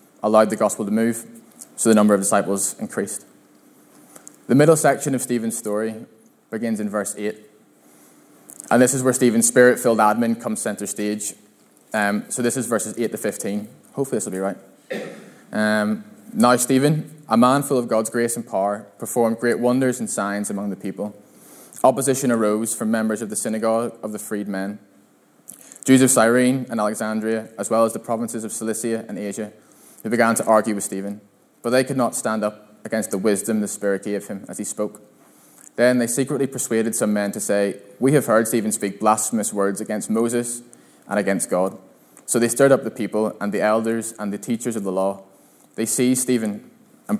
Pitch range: 105-120 Hz